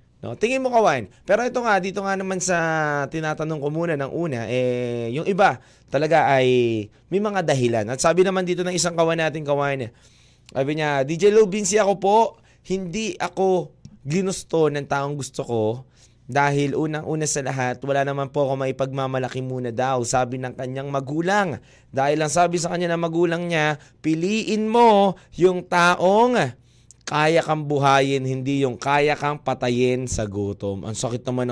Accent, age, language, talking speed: native, 20-39, Filipino, 165 wpm